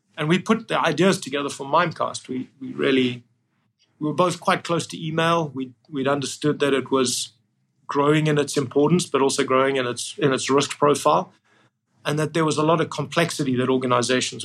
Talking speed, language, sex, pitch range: 195 wpm, English, male, 125-150 Hz